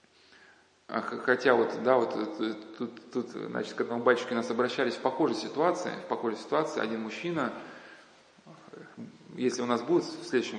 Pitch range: 115-145 Hz